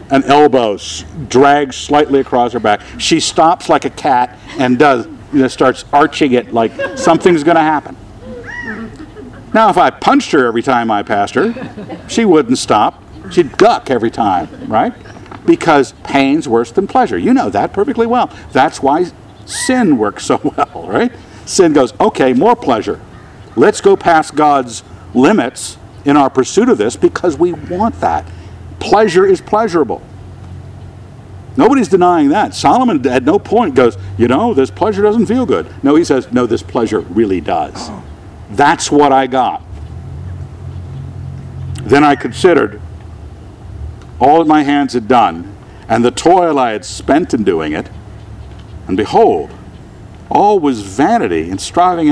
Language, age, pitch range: English, 60-79, 105-170 Hz